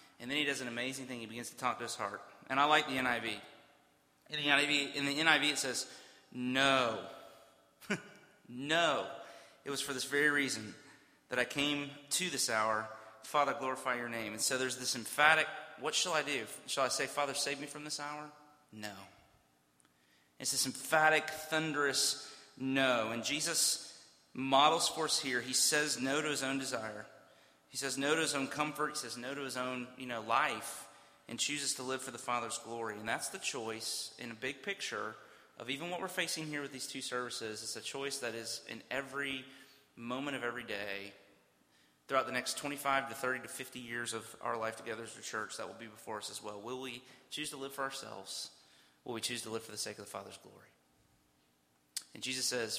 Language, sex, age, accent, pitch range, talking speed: English, male, 30-49, American, 110-140 Hz, 200 wpm